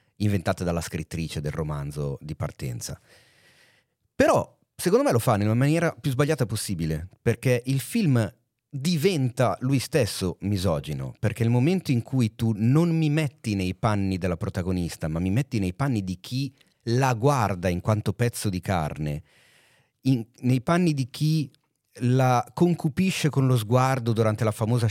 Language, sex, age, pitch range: Italian, male, 30-49, 95-135 Hz